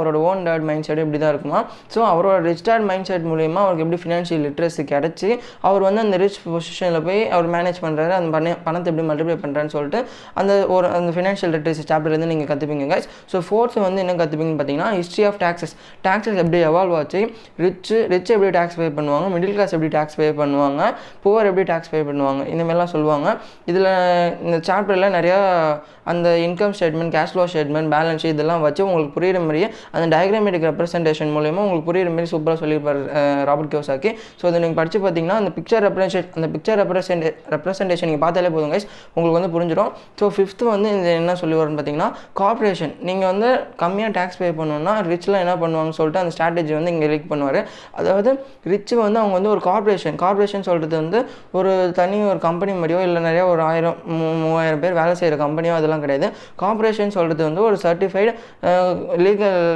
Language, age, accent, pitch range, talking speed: Tamil, 20-39, native, 160-195 Hz, 180 wpm